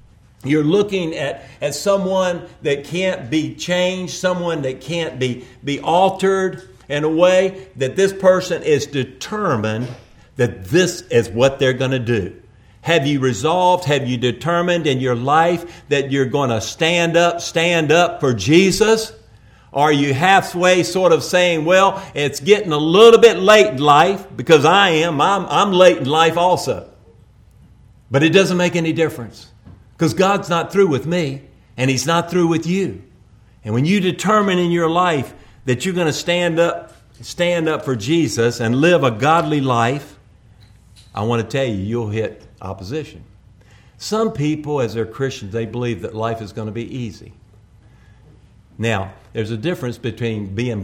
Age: 50-69